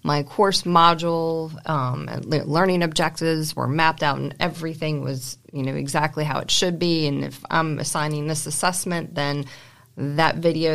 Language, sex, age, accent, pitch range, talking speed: English, female, 30-49, American, 150-170 Hz, 160 wpm